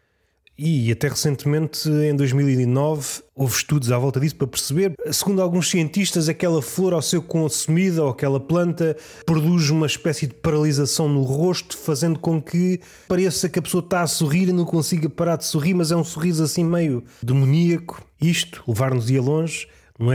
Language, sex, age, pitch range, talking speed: Portuguese, male, 20-39, 125-160 Hz, 170 wpm